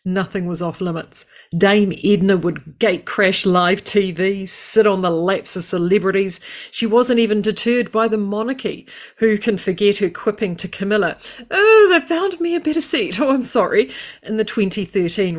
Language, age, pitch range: English, 40-59, 175-225 Hz